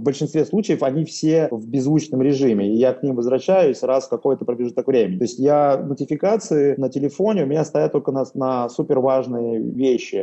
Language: Russian